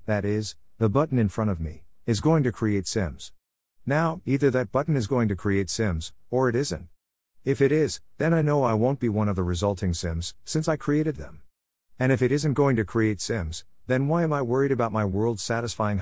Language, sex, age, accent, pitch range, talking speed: English, male, 50-69, American, 90-120 Hz, 225 wpm